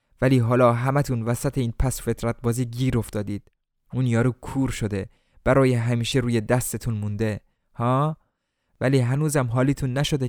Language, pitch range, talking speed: Persian, 105-130 Hz, 140 wpm